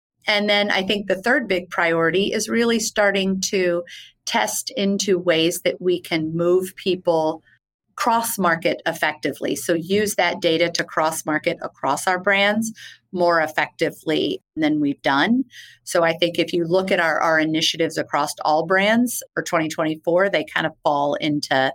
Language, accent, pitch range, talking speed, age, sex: English, American, 165-195 Hz, 155 wpm, 30-49, female